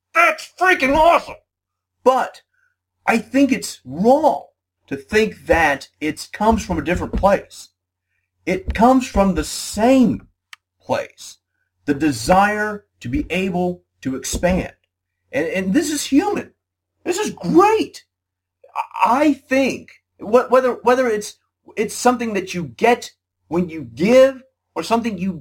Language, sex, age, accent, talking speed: English, male, 40-59, American, 130 wpm